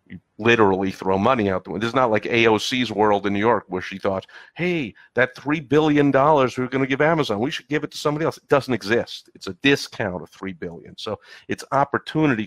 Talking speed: 230 wpm